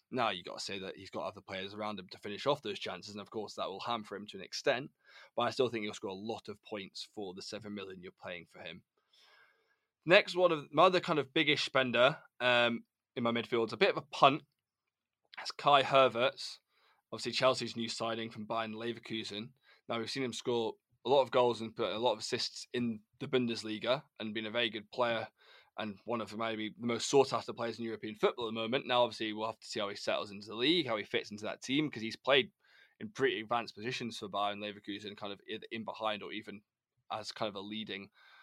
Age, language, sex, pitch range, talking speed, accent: 20-39, English, male, 110-125 Hz, 235 wpm, British